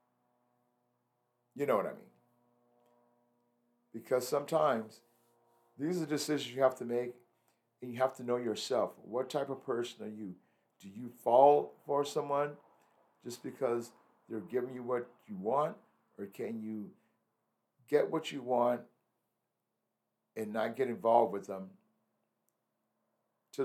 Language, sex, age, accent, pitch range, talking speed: English, male, 60-79, American, 110-140 Hz, 135 wpm